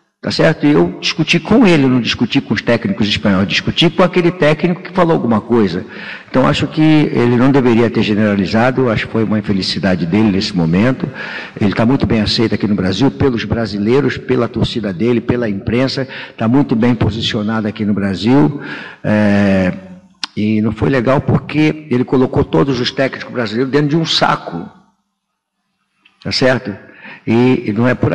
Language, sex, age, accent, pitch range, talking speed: Portuguese, male, 60-79, Brazilian, 105-140 Hz, 175 wpm